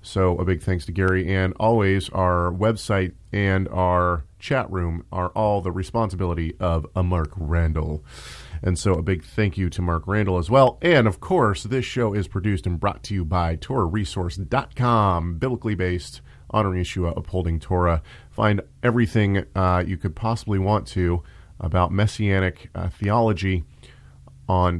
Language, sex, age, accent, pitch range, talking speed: English, male, 40-59, American, 85-110 Hz, 155 wpm